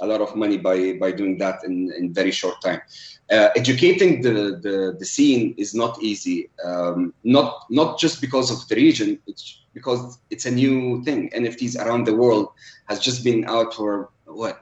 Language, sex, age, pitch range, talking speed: English, male, 30-49, 110-155 Hz, 190 wpm